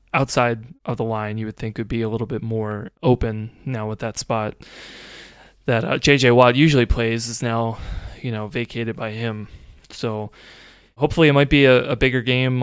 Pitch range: 115-135 Hz